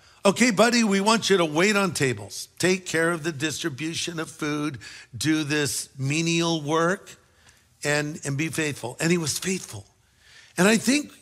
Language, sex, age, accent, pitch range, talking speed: English, male, 50-69, American, 135-170 Hz, 165 wpm